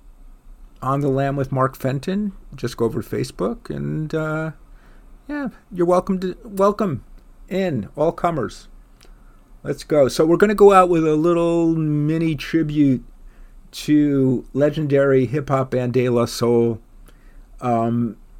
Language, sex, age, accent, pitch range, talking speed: English, male, 50-69, American, 110-135 Hz, 130 wpm